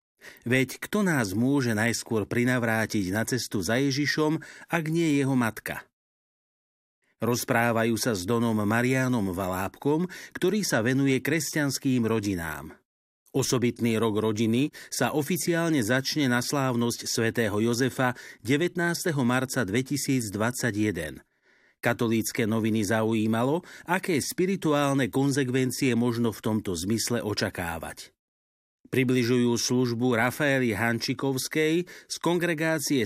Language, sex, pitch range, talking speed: Slovak, male, 115-140 Hz, 100 wpm